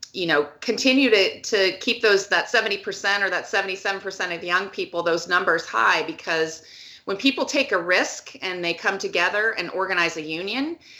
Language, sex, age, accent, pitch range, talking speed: English, female, 30-49, American, 175-220 Hz, 190 wpm